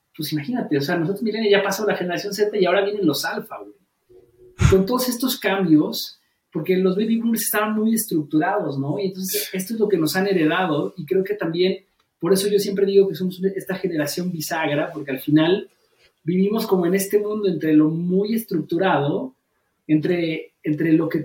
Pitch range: 150-195 Hz